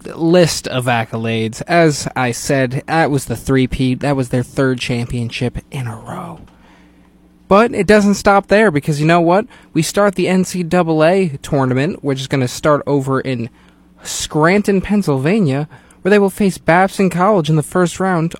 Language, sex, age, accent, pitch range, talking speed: English, male, 20-39, American, 130-175 Hz, 170 wpm